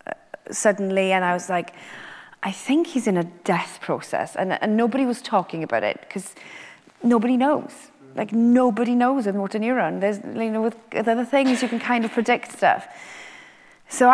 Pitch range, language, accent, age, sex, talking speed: 190-250 Hz, English, British, 30-49, female, 175 wpm